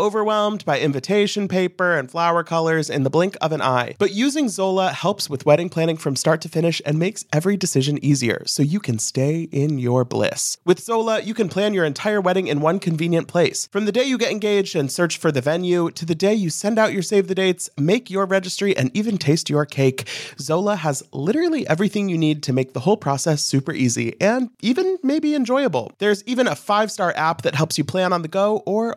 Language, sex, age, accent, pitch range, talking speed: English, male, 30-49, American, 145-205 Hz, 225 wpm